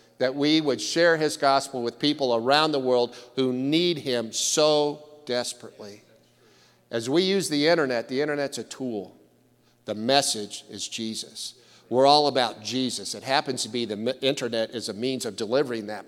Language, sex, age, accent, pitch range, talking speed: English, male, 50-69, American, 125-155 Hz, 170 wpm